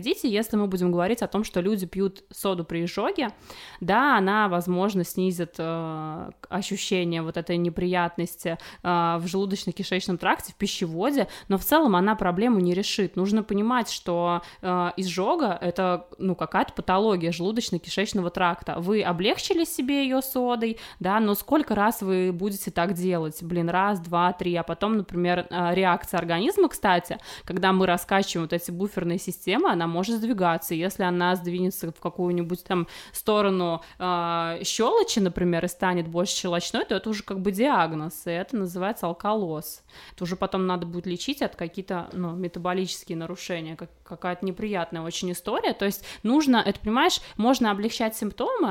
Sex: female